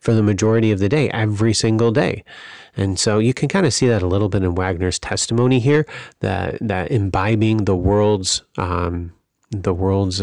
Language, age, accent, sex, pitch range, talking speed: English, 30-49, American, male, 95-110 Hz, 190 wpm